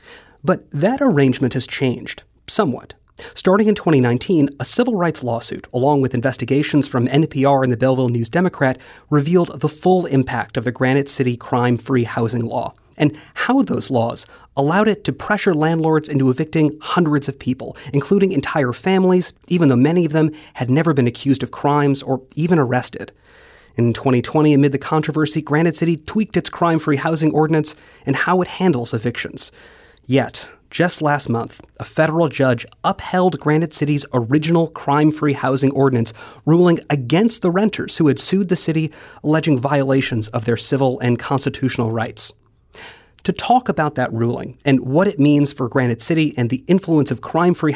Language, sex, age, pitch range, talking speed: English, male, 30-49, 130-160 Hz, 165 wpm